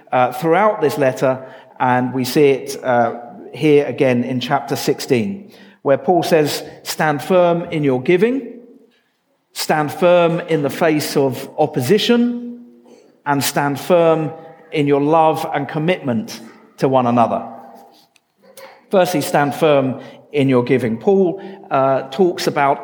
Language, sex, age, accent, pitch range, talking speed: English, male, 40-59, British, 140-175 Hz, 130 wpm